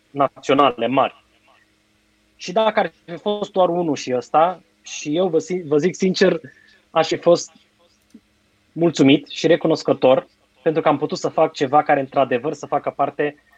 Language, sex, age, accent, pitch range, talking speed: Romanian, male, 20-39, native, 130-180 Hz, 150 wpm